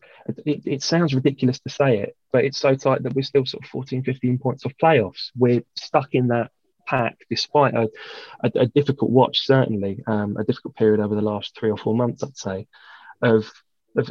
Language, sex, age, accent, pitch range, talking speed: English, male, 20-39, British, 110-130 Hz, 205 wpm